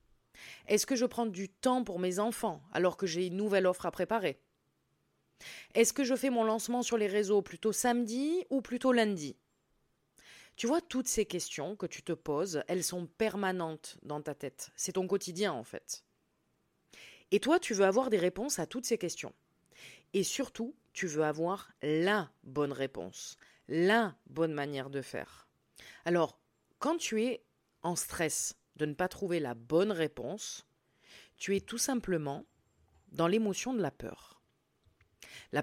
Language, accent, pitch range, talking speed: French, French, 160-220 Hz, 165 wpm